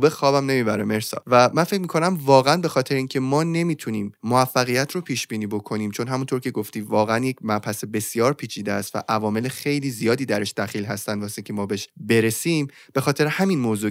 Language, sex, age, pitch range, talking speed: Persian, male, 20-39, 105-140 Hz, 195 wpm